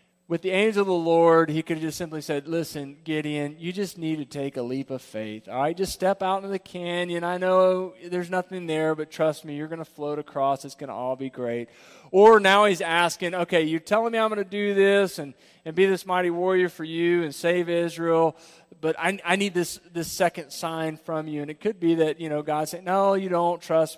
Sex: male